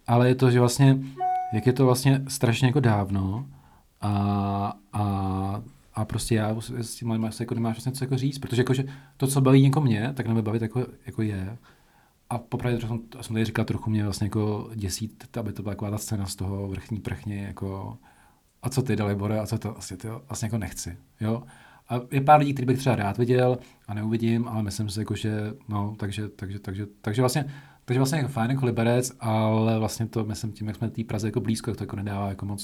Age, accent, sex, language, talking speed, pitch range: 40-59, native, male, Czech, 220 wpm, 105-125 Hz